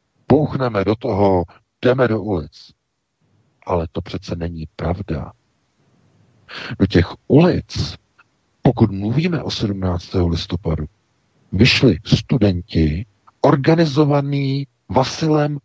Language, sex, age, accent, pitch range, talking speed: Czech, male, 50-69, native, 100-140 Hz, 90 wpm